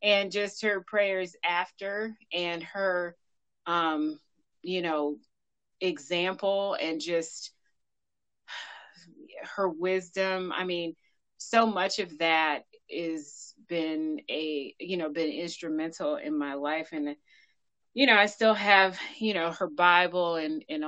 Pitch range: 160-205 Hz